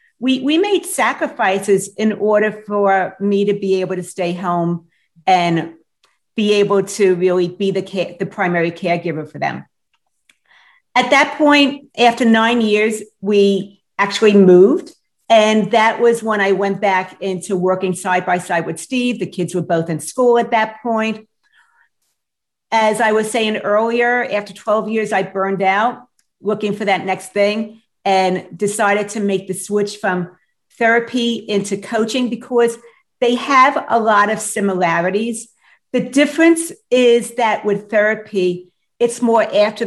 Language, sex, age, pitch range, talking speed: English, female, 50-69, 190-235 Hz, 150 wpm